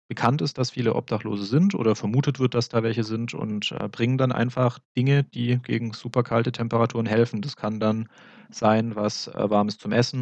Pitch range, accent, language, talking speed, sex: 105-125 Hz, German, German, 180 wpm, male